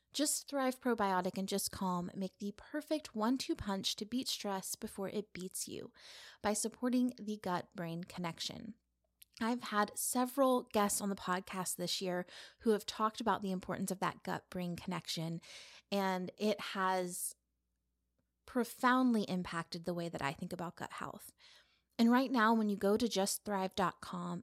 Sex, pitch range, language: female, 185-230 Hz, English